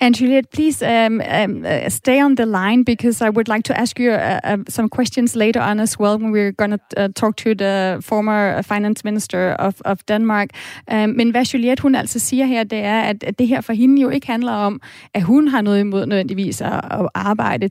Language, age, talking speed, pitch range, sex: Danish, 30-49, 225 wpm, 205-245 Hz, female